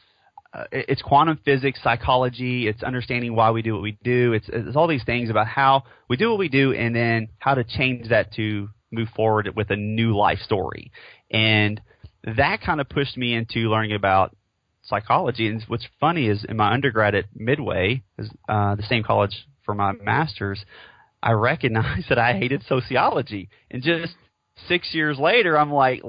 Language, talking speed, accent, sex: English, 180 wpm, American, male